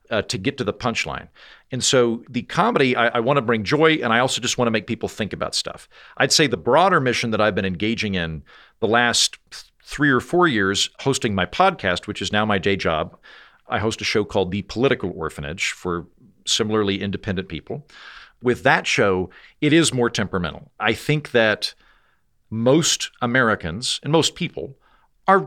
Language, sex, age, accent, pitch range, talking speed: English, male, 50-69, American, 100-125 Hz, 185 wpm